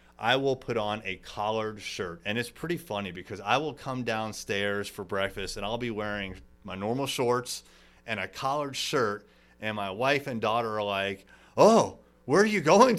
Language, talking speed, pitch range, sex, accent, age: English, 190 wpm, 100-125 Hz, male, American, 30-49